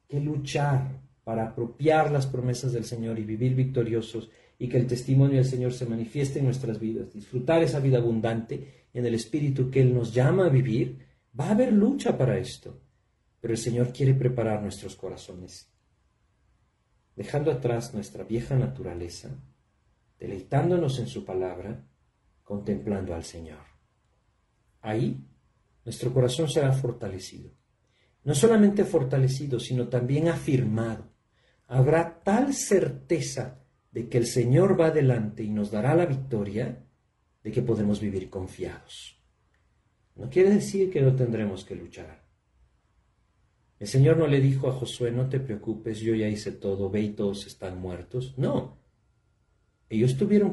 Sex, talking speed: male, 145 wpm